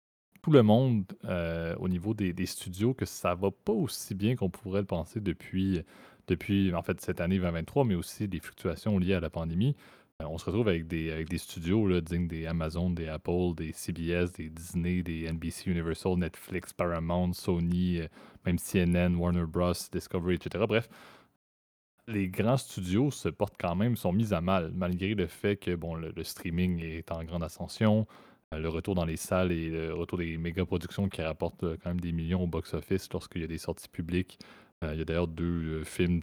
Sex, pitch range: male, 85-95 Hz